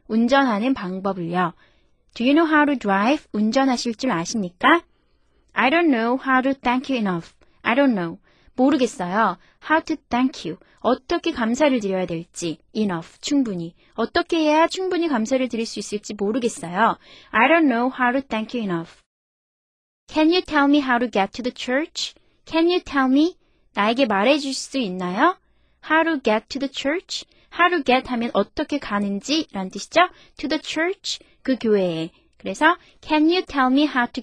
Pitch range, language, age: 205-290 Hz, Korean, 20-39